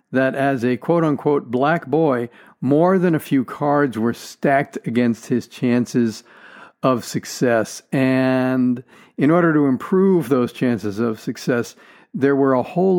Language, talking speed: English, 145 wpm